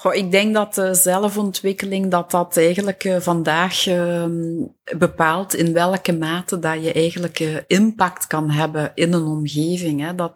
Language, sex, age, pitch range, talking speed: Dutch, female, 30-49, 155-185 Hz, 150 wpm